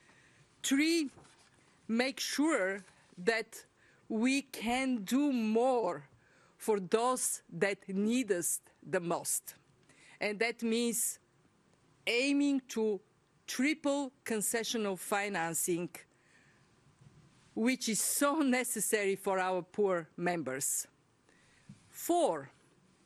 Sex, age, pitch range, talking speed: female, 50-69, 190-245 Hz, 85 wpm